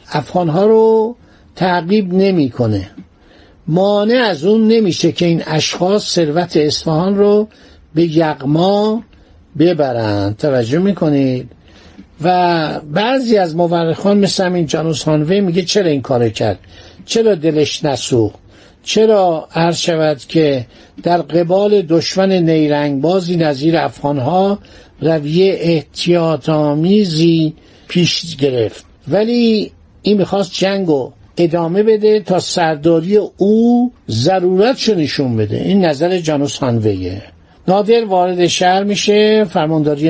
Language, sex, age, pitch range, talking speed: Persian, male, 60-79, 145-195 Hz, 110 wpm